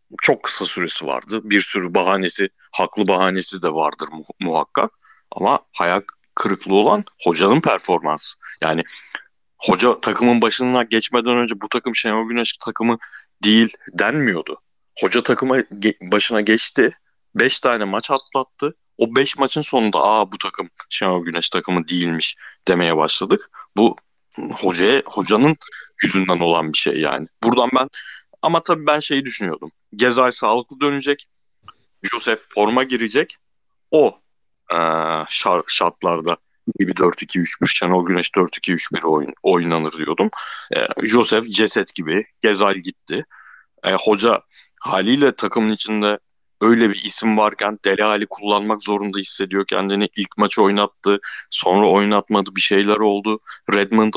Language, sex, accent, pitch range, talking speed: Turkish, male, native, 100-120 Hz, 130 wpm